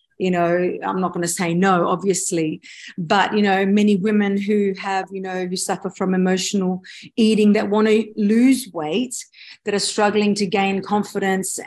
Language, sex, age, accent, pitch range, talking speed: English, female, 40-59, Australian, 195-245 Hz, 175 wpm